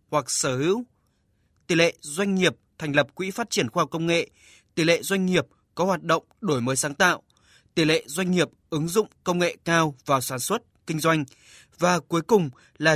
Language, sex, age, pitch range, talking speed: Vietnamese, male, 20-39, 145-185 Hz, 210 wpm